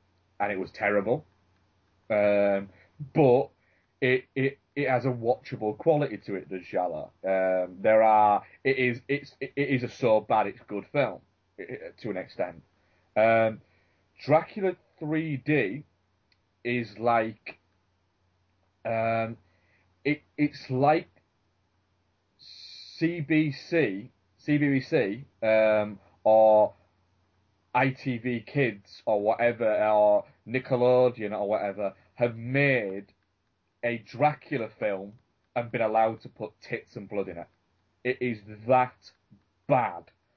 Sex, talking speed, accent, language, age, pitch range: male, 110 wpm, British, English, 30-49, 95-130 Hz